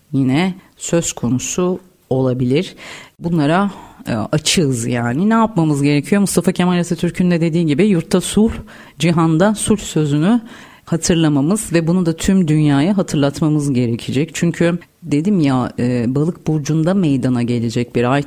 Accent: native